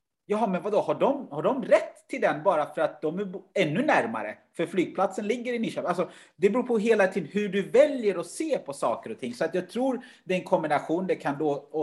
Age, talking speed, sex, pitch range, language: 30-49, 245 wpm, male, 155-205 Hz, Swedish